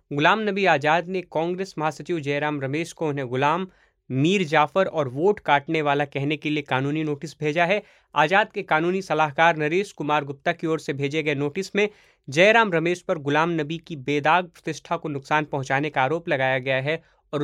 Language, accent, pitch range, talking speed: Hindi, native, 150-185 Hz, 190 wpm